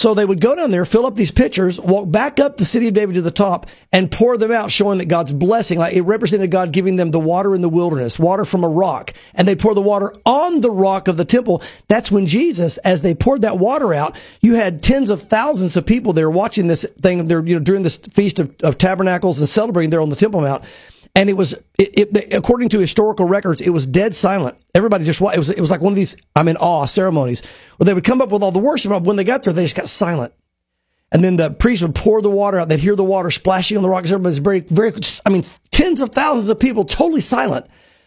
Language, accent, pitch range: English, American, 170-215 Hz